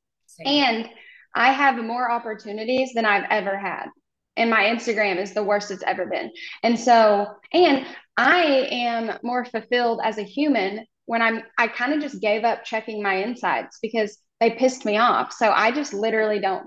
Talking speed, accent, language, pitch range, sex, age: 175 wpm, American, English, 215-265 Hz, female, 10-29